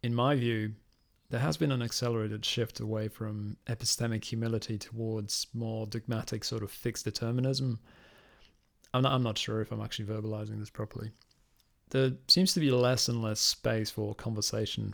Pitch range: 110-125 Hz